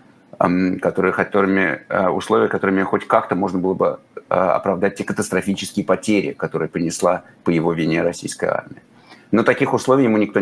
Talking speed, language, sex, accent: 145 wpm, Russian, male, native